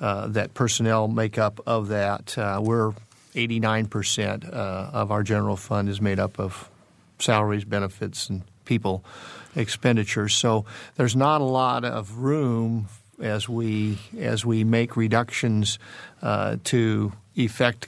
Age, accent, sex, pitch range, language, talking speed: 50-69, American, male, 105-125 Hz, English, 150 wpm